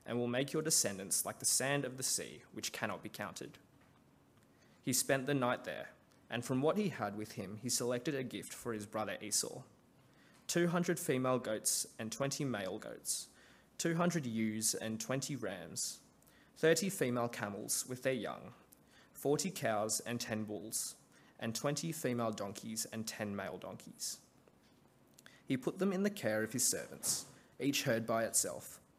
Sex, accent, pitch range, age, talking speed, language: male, Australian, 110-145 Hz, 20-39, 165 wpm, English